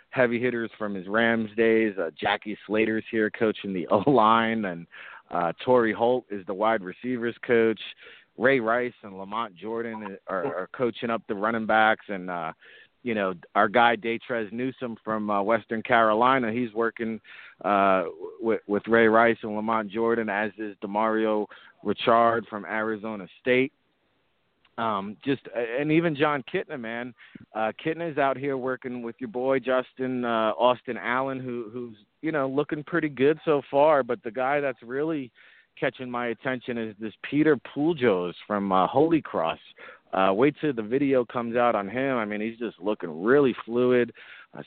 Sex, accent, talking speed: male, American, 165 wpm